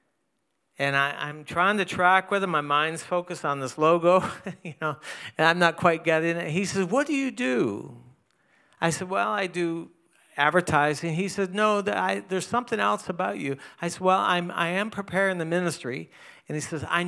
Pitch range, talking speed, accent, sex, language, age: 150-185 Hz, 195 wpm, American, male, English, 60-79